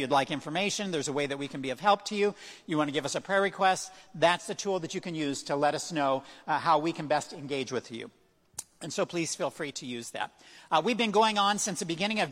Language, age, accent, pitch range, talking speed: English, 50-69, American, 155-190 Hz, 285 wpm